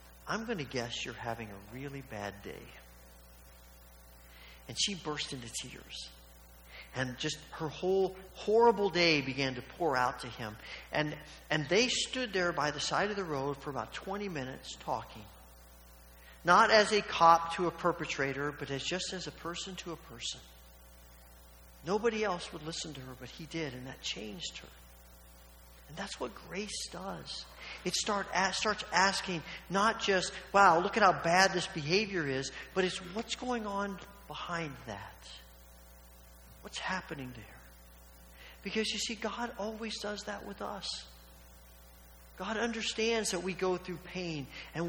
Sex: male